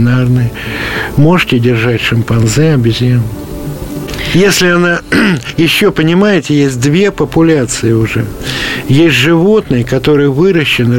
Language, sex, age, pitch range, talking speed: Russian, male, 60-79, 125-160 Hz, 85 wpm